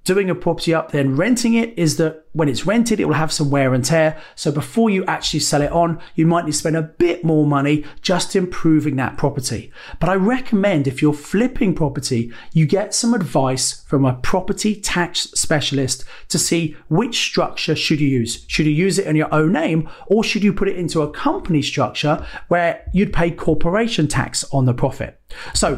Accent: British